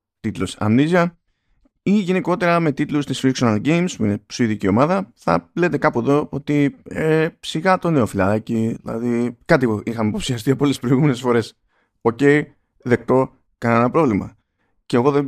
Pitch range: 105-160 Hz